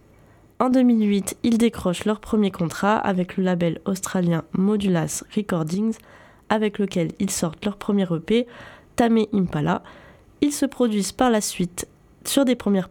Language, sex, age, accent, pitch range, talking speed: French, female, 20-39, French, 180-230 Hz, 145 wpm